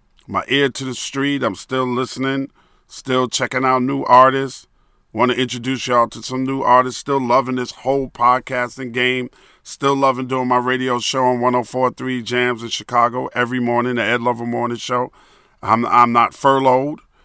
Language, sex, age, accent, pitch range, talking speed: English, male, 40-59, American, 120-135 Hz, 170 wpm